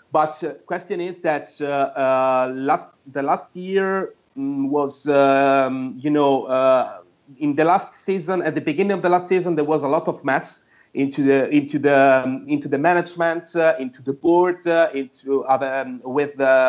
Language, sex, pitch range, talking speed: English, male, 135-165 Hz, 175 wpm